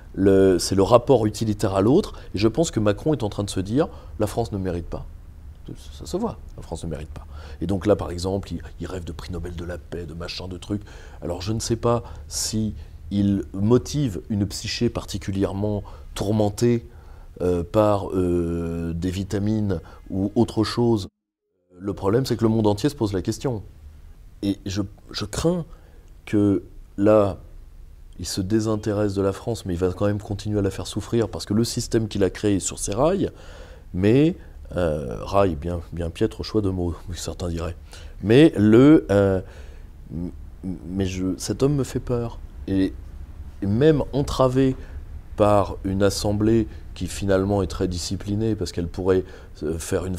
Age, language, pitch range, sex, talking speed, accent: 30-49, French, 85-105 Hz, male, 180 wpm, French